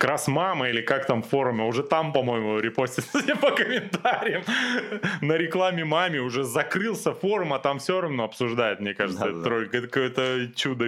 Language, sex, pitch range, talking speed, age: Russian, male, 110-155 Hz, 155 wpm, 20-39